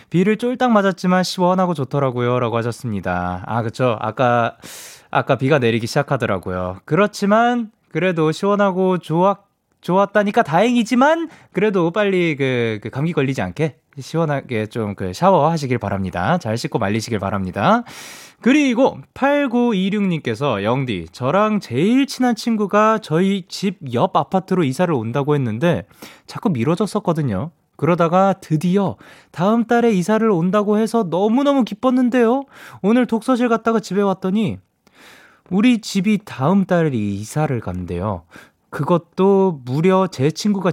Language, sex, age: Korean, male, 20-39